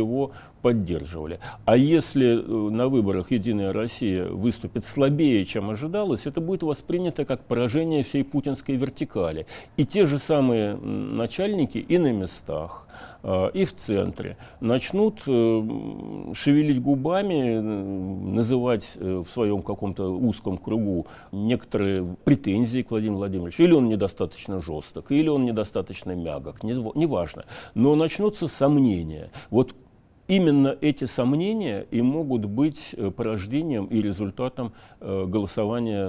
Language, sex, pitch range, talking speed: Russian, male, 105-145 Hz, 115 wpm